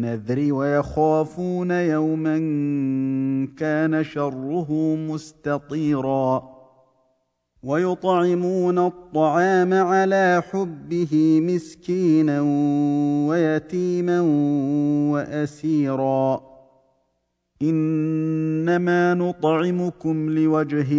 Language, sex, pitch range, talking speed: Arabic, male, 145-175 Hz, 45 wpm